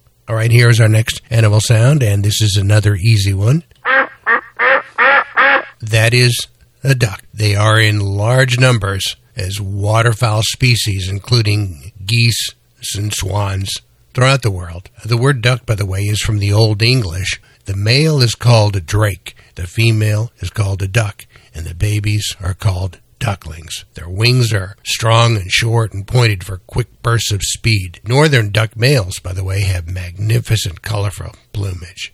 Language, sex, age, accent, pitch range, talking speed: English, male, 60-79, American, 100-115 Hz, 160 wpm